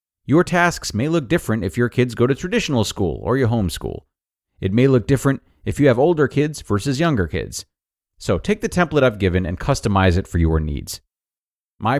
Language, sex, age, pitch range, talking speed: English, male, 30-49, 95-130 Hz, 200 wpm